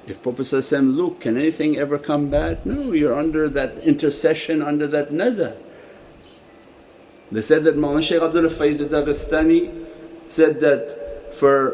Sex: male